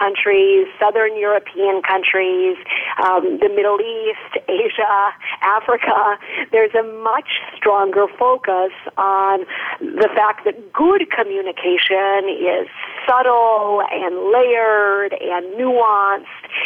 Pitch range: 195-300 Hz